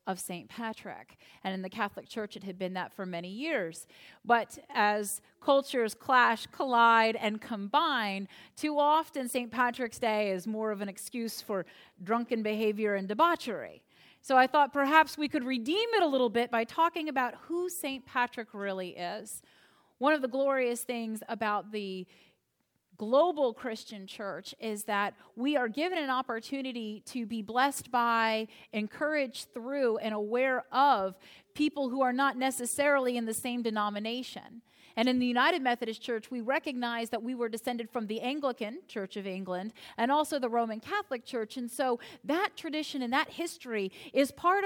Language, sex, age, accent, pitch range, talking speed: English, female, 30-49, American, 220-290 Hz, 165 wpm